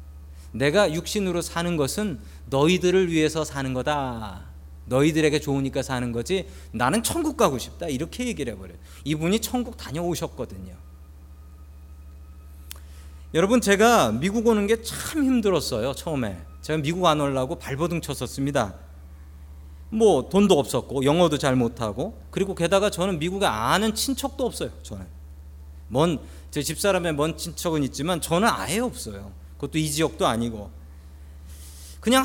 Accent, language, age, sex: native, Korean, 40-59, male